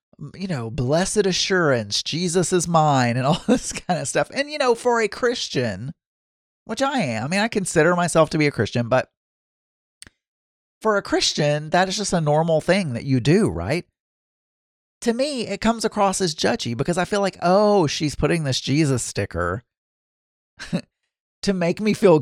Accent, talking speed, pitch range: American, 180 wpm, 130-195 Hz